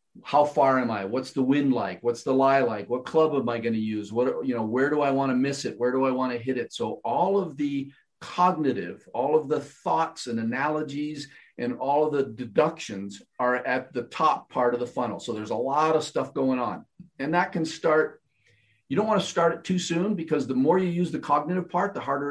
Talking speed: 240 wpm